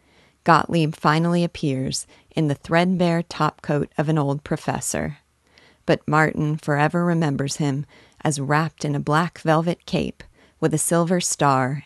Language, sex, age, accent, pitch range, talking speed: English, female, 40-59, American, 140-170 Hz, 135 wpm